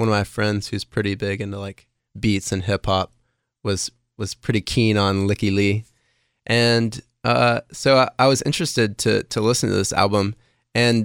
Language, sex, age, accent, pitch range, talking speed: English, male, 20-39, American, 105-120 Hz, 185 wpm